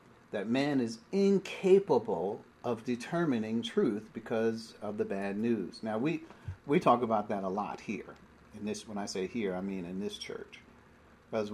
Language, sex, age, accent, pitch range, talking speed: English, male, 50-69, American, 115-195 Hz, 170 wpm